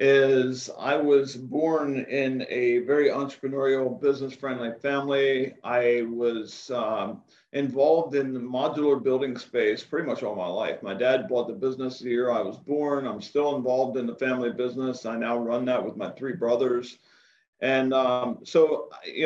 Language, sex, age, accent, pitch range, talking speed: English, male, 50-69, American, 125-140 Hz, 160 wpm